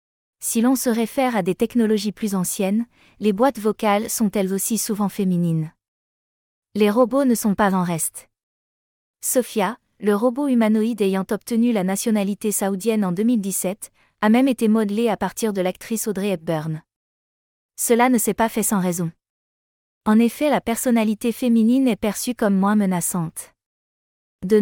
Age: 20-39